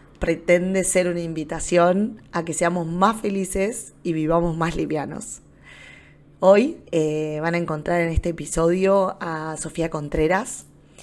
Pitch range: 160-185 Hz